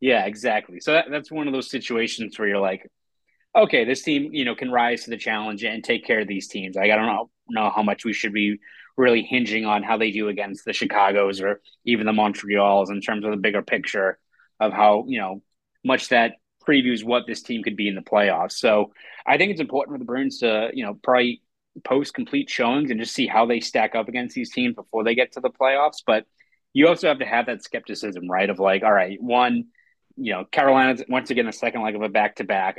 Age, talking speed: 20-39, 235 wpm